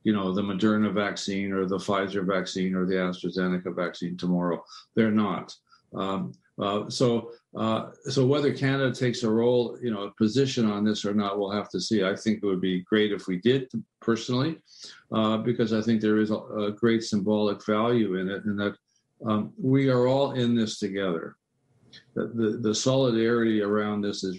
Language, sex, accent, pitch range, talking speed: English, male, American, 100-120 Hz, 190 wpm